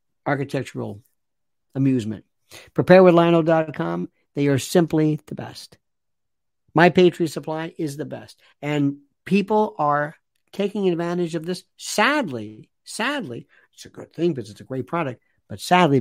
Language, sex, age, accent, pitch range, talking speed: English, male, 60-79, American, 130-190 Hz, 125 wpm